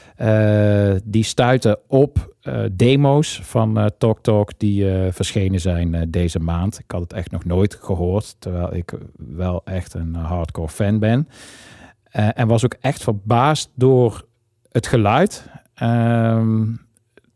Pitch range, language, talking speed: 90-115 Hz, Dutch, 150 wpm